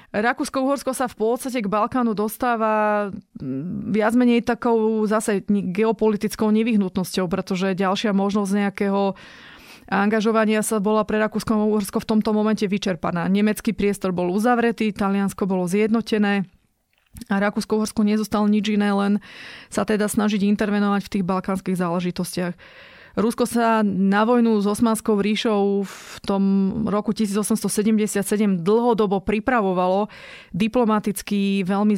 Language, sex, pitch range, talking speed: Slovak, female, 195-220 Hz, 120 wpm